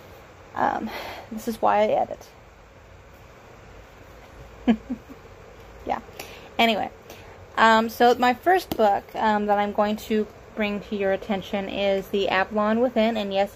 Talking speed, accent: 125 wpm, American